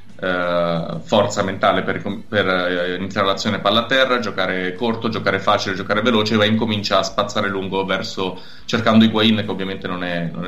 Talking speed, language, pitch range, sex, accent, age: 180 wpm, Italian, 95-115 Hz, male, native, 20-39